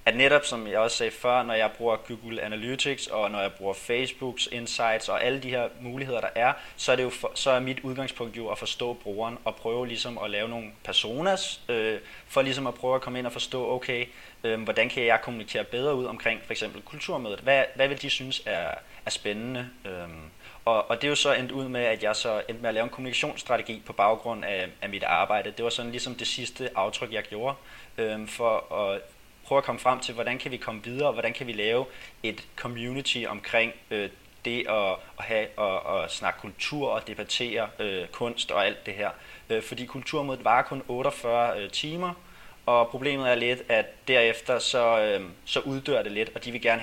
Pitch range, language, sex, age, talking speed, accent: 110-130 Hz, Danish, male, 20-39, 220 wpm, native